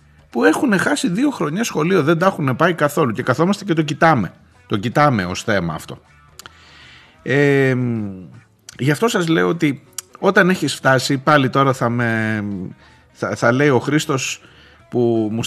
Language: Greek